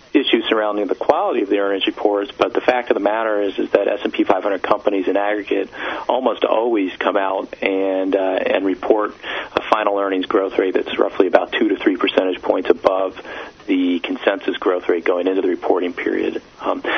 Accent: American